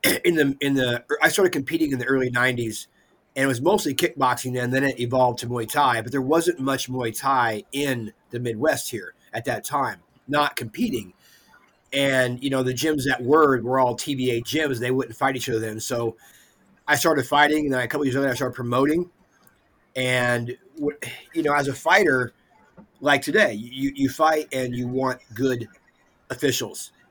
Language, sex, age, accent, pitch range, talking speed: English, male, 30-49, American, 120-140 Hz, 185 wpm